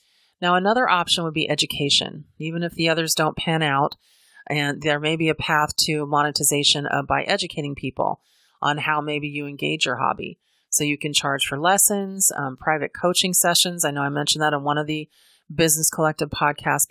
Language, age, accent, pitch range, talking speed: English, 30-49, American, 145-175 Hz, 190 wpm